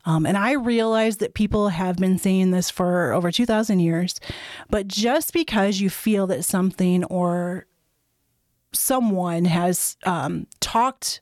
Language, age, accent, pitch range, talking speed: English, 30-49, American, 185-240 Hz, 140 wpm